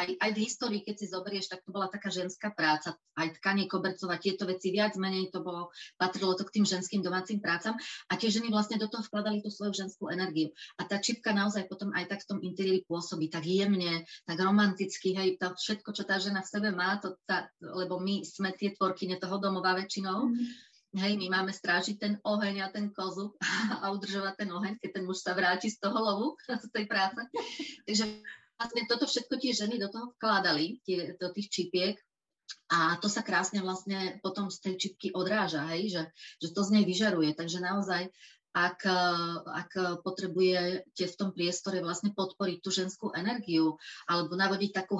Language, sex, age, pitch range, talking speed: Slovak, female, 30-49, 180-205 Hz, 195 wpm